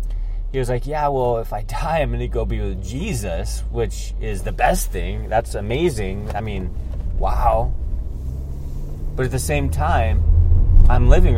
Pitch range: 90-115 Hz